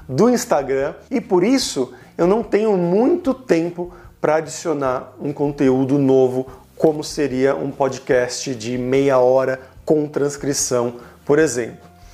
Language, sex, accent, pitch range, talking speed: Portuguese, male, Brazilian, 140-190 Hz, 130 wpm